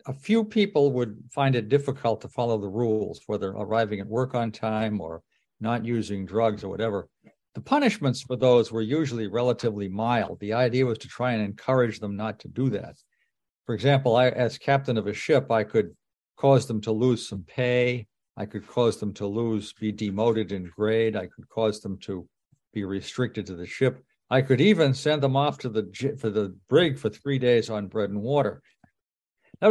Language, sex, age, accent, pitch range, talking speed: English, male, 60-79, American, 110-145 Hz, 195 wpm